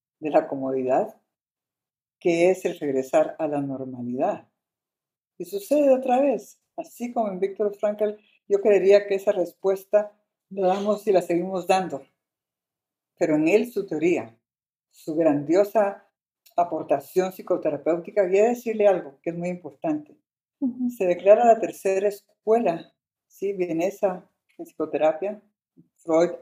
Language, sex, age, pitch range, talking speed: Spanish, female, 50-69, 155-200 Hz, 130 wpm